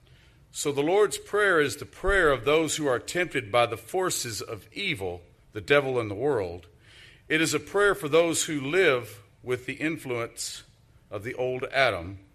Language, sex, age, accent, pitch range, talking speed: English, male, 50-69, American, 115-150 Hz, 180 wpm